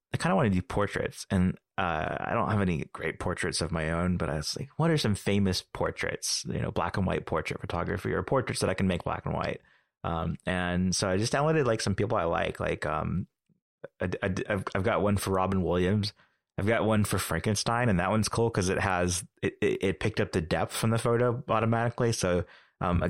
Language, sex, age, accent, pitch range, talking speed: English, male, 30-49, American, 85-100 Hz, 235 wpm